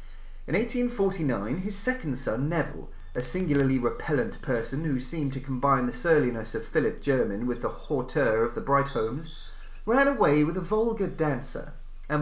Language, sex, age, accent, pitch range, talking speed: English, male, 30-49, British, 125-190 Hz, 155 wpm